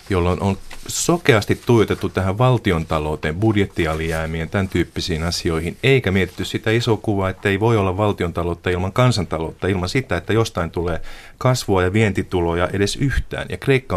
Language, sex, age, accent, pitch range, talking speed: Finnish, male, 30-49, native, 85-105 Hz, 145 wpm